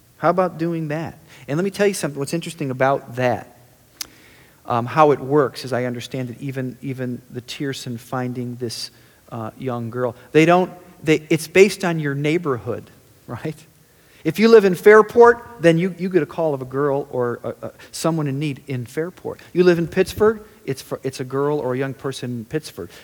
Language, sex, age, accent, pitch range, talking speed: English, male, 40-59, American, 120-165 Hz, 205 wpm